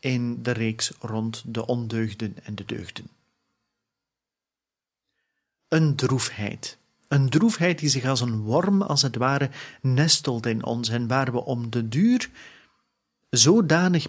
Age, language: 40-59, Dutch